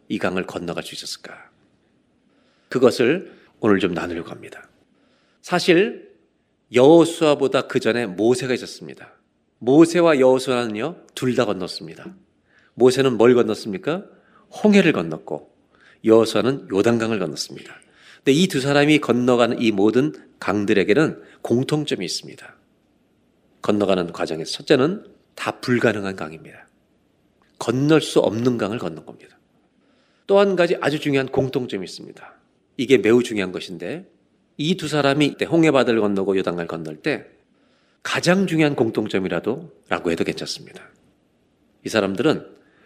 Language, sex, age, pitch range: Korean, male, 40-59, 115-165 Hz